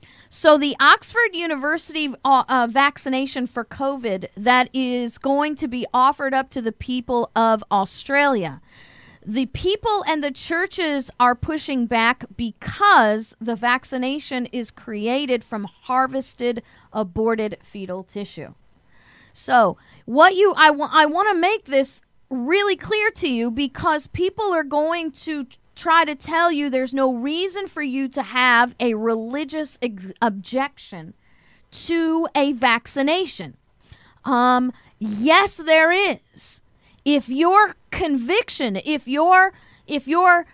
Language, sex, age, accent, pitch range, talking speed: English, female, 40-59, American, 245-335 Hz, 125 wpm